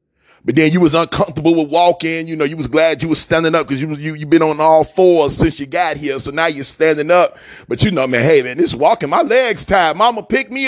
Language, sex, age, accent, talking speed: English, male, 30-49, American, 255 wpm